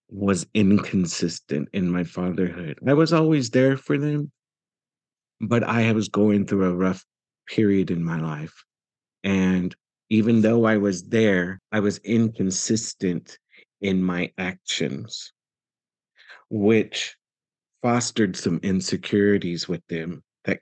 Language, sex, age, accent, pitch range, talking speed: English, male, 50-69, American, 90-110 Hz, 120 wpm